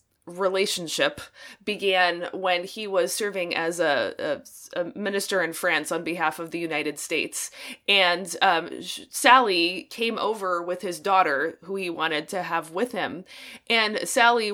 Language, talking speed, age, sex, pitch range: English, 150 wpm, 20-39, female, 170-220 Hz